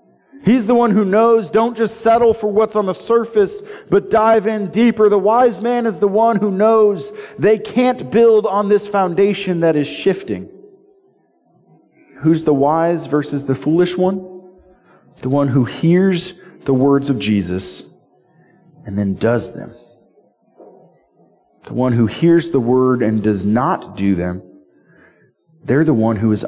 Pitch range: 125-200 Hz